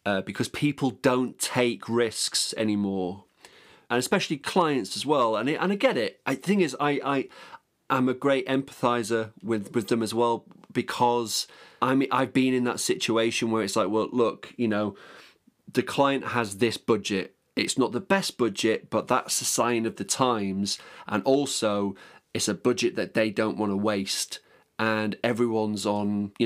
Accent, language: British, English